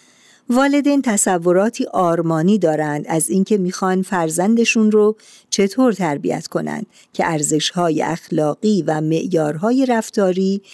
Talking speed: 100 wpm